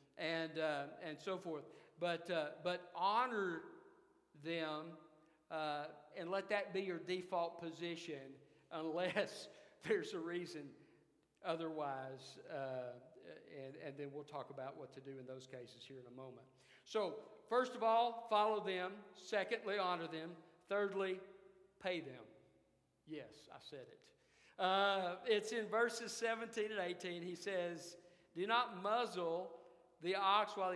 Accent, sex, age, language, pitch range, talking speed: American, male, 50-69, English, 155-220 Hz, 140 wpm